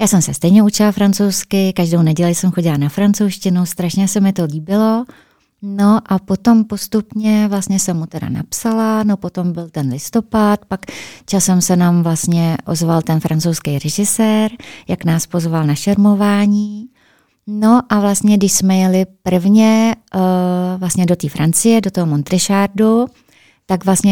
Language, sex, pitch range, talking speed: Czech, female, 165-200 Hz, 155 wpm